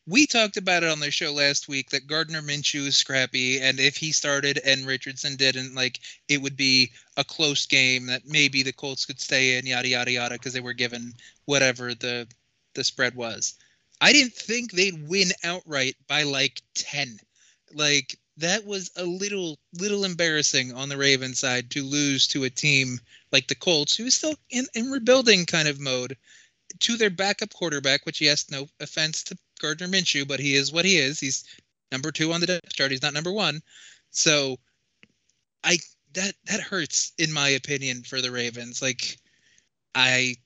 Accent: American